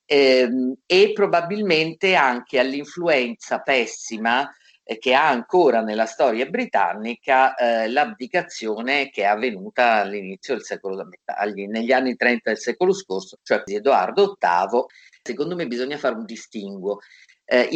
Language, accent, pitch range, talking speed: Italian, native, 110-150 Hz, 140 wpm